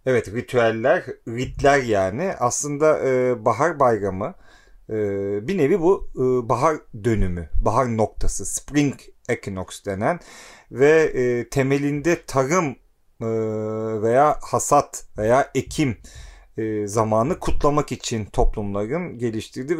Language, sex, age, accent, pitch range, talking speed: Turkish, male, 40-59, native, 105-135 Hz, 105 wpm